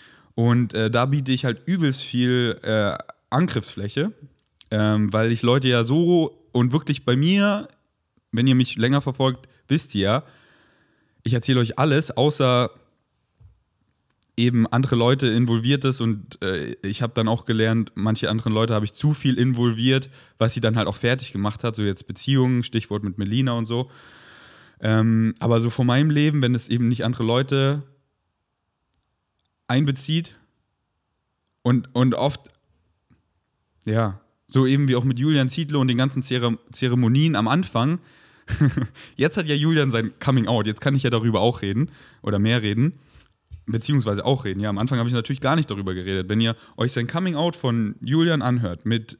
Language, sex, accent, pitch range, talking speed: German, male, German, 110-135 Hz, 170 wpm